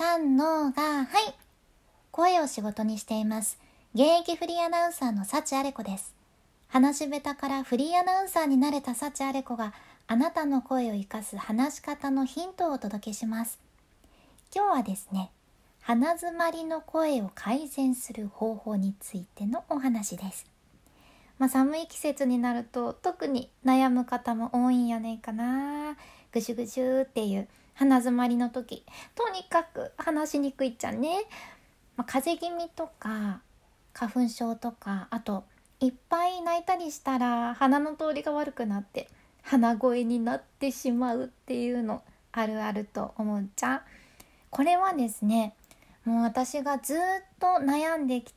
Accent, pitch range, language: native, 230-300 Hz, Japanese